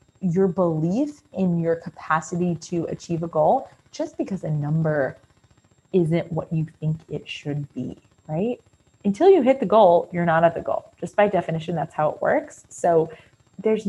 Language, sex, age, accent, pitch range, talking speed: English, female, 20-39, American, 165-220 Hz, 175 wpm